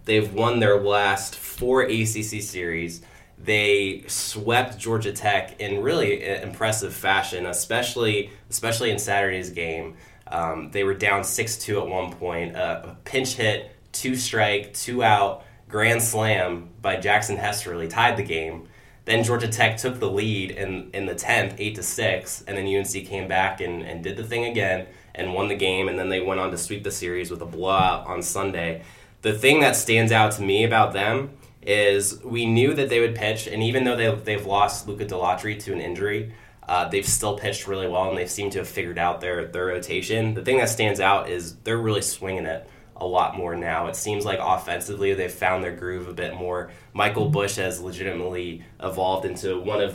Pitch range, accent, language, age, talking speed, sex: 90-110 Hz, American, English, 20-39, 195 wpm, male